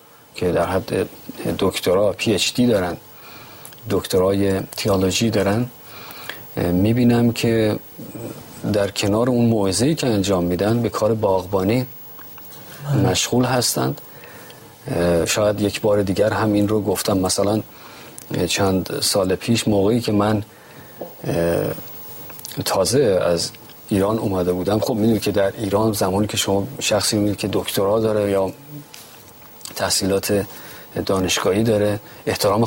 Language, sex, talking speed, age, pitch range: Persian, male, 115 wpm, 40-59, 100-120 Hz